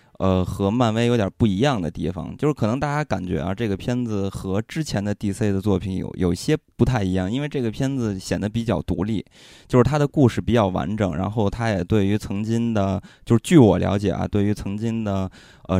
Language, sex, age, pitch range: Chinese, male, 20-39, 95-120 Hz